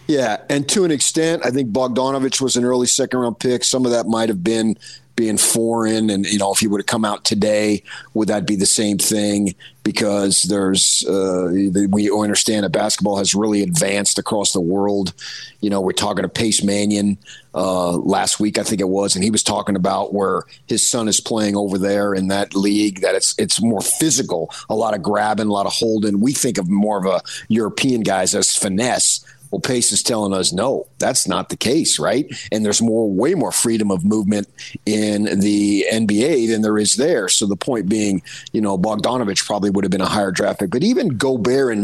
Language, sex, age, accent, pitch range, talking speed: English, male, 30-49, American, 100-115 Hz, 210 wpm